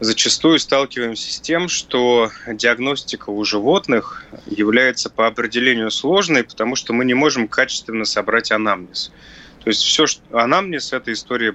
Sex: male